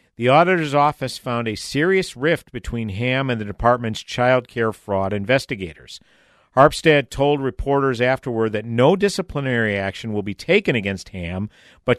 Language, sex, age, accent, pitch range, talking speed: English, male, 50-69, American, 115-140 Hz, 150 wpm